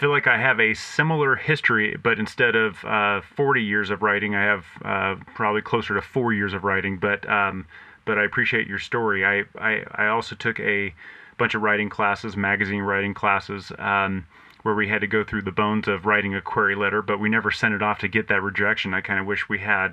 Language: English